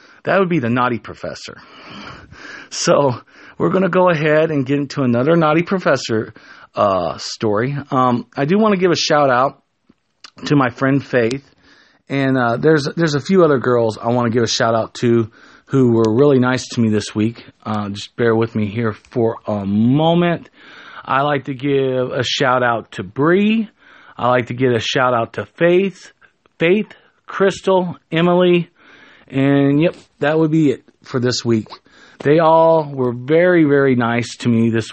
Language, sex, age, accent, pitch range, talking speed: English, male, 40-59, American, 120-160 Hz, 180 wpm